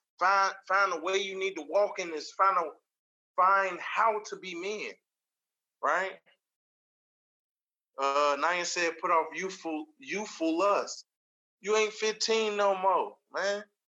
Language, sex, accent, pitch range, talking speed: English, male, American, 190-230 Hz, 145 wpm